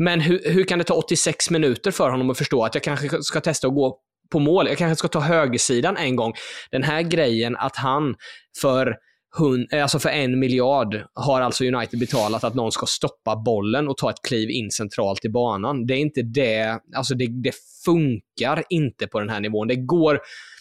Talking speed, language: 205 wpm, Swedish